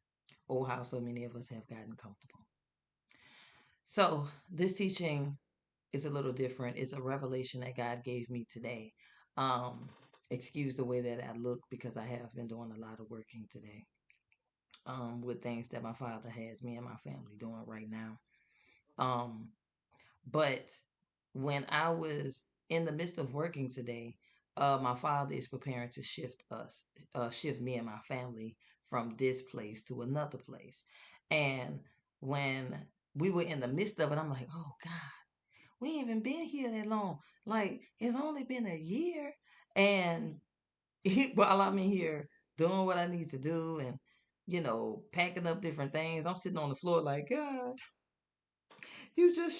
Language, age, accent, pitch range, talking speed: English, 20-39, American, 125-195 Hz, 165 wpm